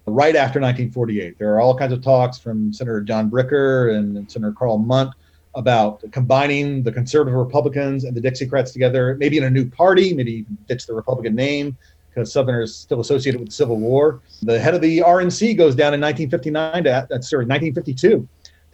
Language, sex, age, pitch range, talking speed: English, male, 40-59, 120-160 Hz, 180 wpm